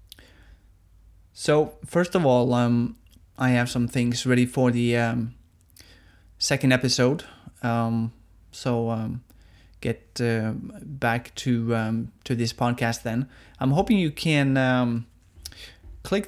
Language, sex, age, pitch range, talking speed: English, male, 20-39, 105-125 Hz, 120 wpm